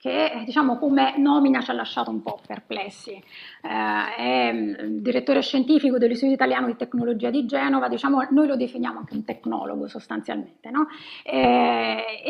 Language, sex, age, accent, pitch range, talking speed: Italian, female, 30-49, native, 240-290 Hz, 145 wpm